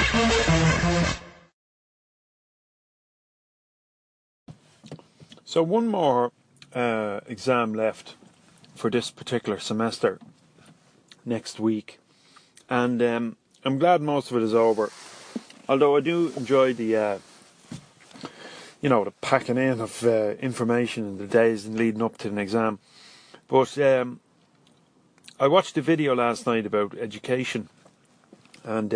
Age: 30-49